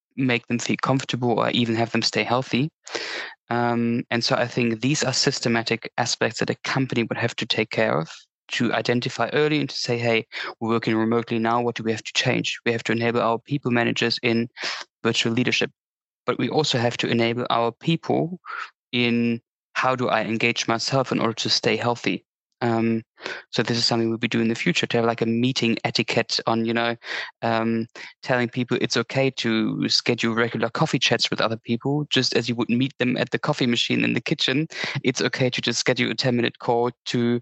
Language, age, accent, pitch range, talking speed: English, 20-39, German, 115-130 Hz, 205 wpm